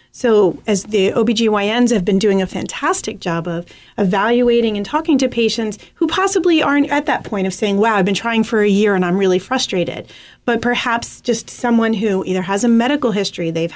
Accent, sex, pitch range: American, female, 190-245 Hz